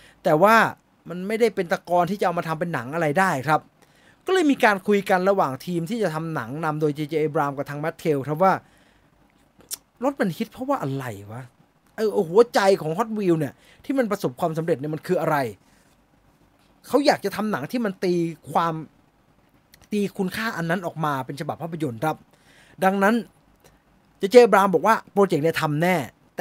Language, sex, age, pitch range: English, male, 20-39, 150-195 Hz